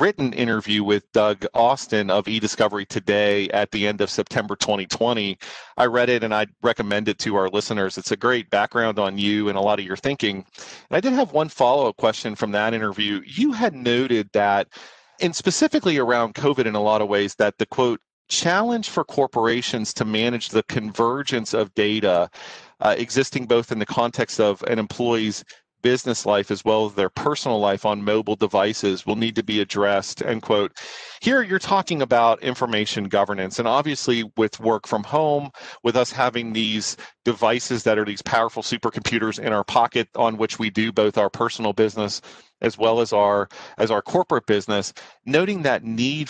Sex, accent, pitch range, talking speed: male, American, 105-120 Hz, 185 wpm